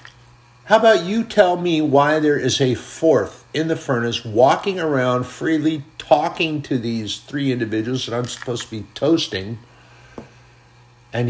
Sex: male